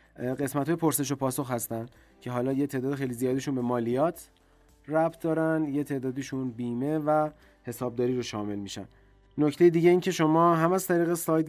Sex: male